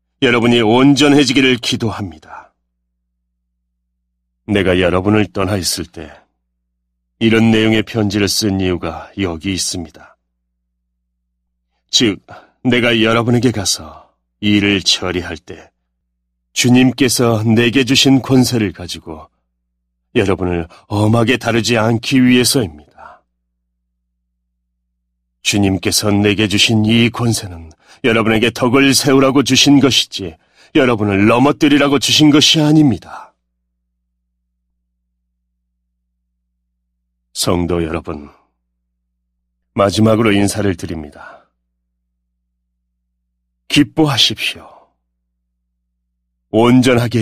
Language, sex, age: Korean, male, 30-49